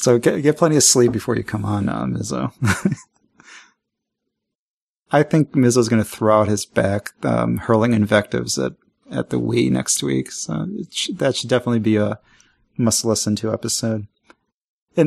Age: 30-49